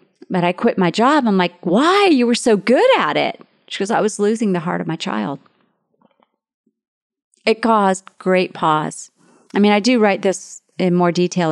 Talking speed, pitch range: 195 wpm, 175-205 Hz